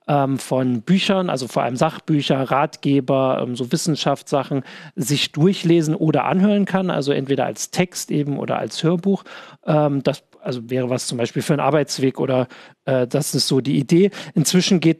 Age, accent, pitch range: 40-59, German, 140-180 Hz